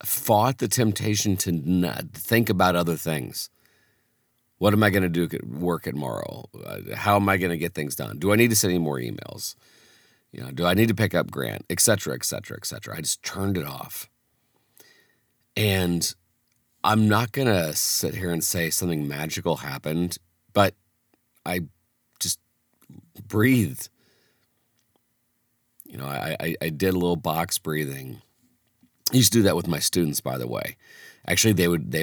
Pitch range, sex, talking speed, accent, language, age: 80-105 Hz, male, 170 wpm, American, English, 40-59